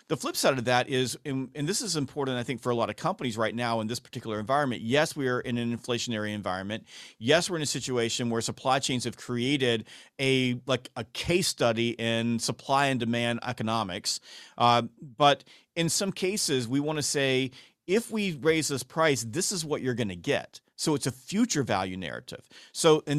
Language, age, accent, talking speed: English, 40-59, American, 205 wpm